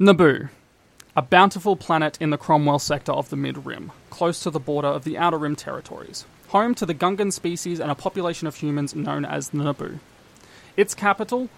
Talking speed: 180 wpm